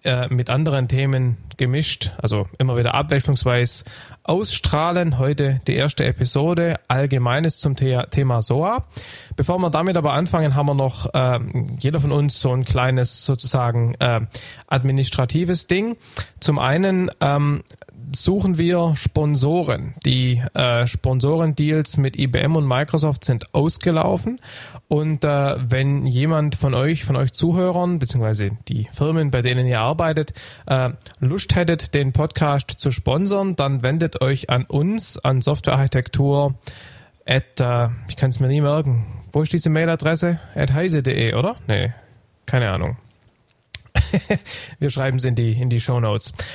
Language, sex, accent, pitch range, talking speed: German, male, German, 125-150 Hz, 140 wpm